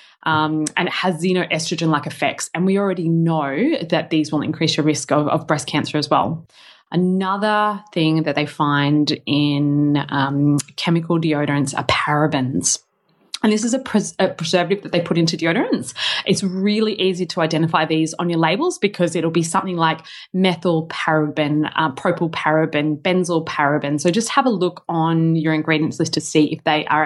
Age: 20-39